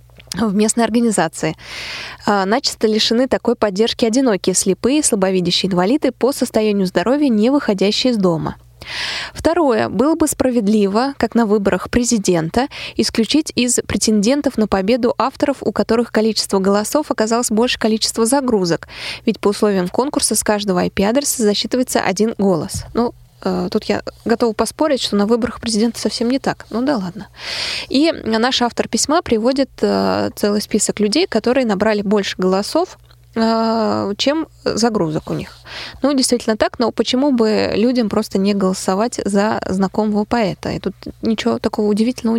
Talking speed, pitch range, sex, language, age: 140 wpm, 200-245 Hz, female, Russian, 20-39